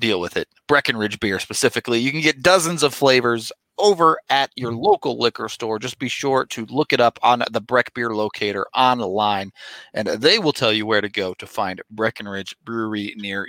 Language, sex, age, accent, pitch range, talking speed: English, male, 30-49, American, 115-160 Hz, 195 wpm